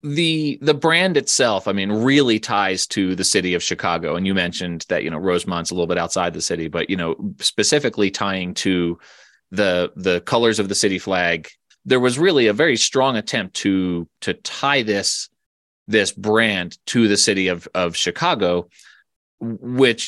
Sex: male